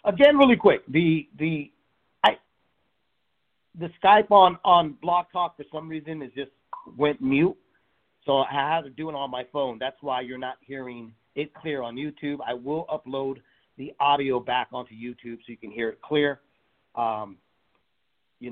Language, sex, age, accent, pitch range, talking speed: English, male, 40-59, American, 140-200 Hz, 175 wpm